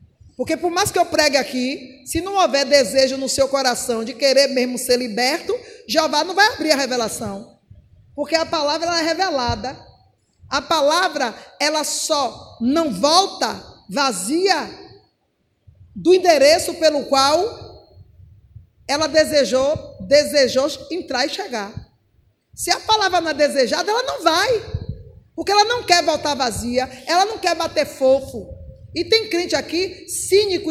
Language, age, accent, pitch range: Portuguese, 20-39, Brazilian, 255-340 Hz